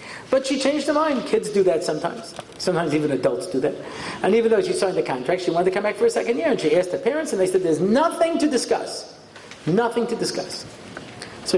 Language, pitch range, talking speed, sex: English, 175-270 Hz, 240 wpm, male